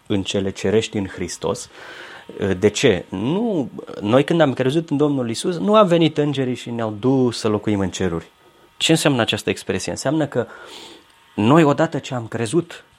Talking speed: 170 wpm